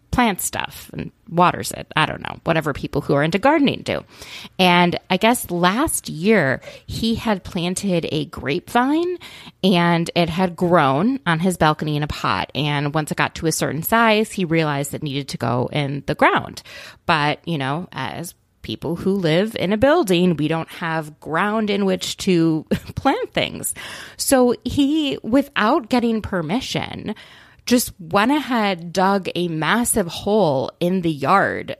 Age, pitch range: 30-49, 165-235 Hz